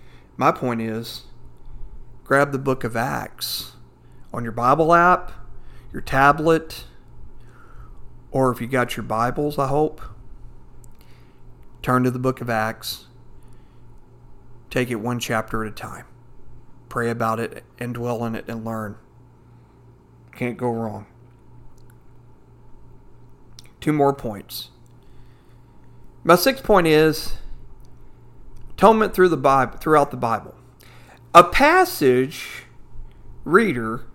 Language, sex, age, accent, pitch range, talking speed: English, male, 40-59, American, 120-150 Hz, 105 wpm